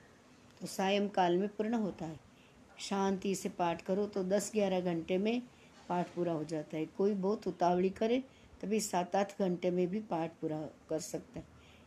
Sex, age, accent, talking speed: female, 60-79, native, 175 wpm